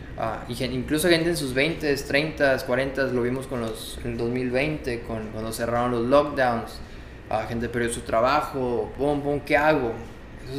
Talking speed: 170 wpm